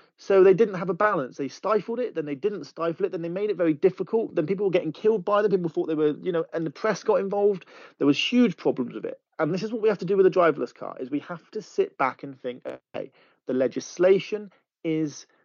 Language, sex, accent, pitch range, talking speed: English, male, British, 140-205 Hz, 265 wpm